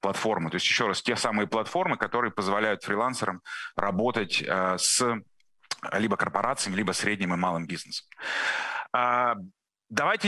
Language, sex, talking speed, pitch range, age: Russian, male, 115 wpm, 100-140 Hz, 30-49